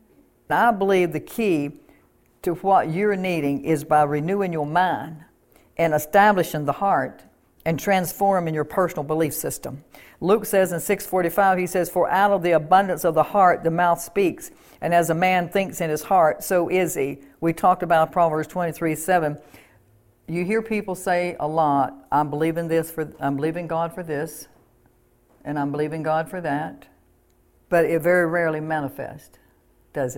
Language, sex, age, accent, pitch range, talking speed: English, female, 60-79, American, 150-180 Hz, 165 wpm